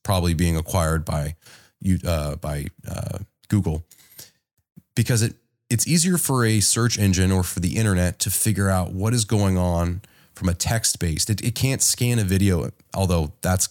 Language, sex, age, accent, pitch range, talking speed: English, male, 30-49, American, 85-110 Hz, 175 wpm